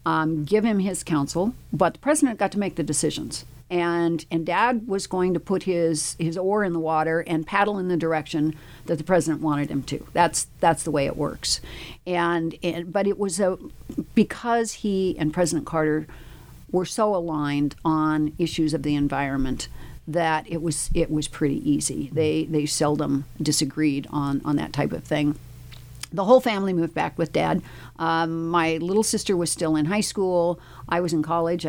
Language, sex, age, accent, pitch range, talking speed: English, female, 50-69, American, 150-180 Hz, 185 wpm